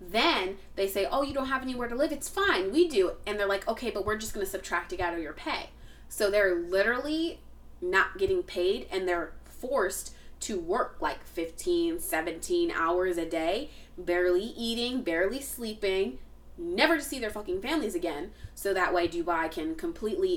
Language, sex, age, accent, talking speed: English, female, 20-39, American, 185 wpm